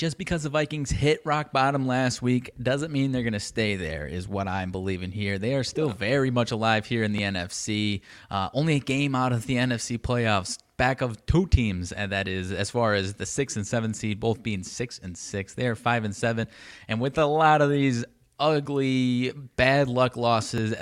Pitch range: 105-130 Hz